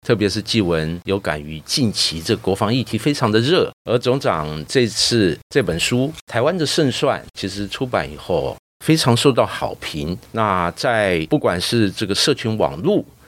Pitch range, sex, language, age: 100-145 Hz, male, Chinese, 50-69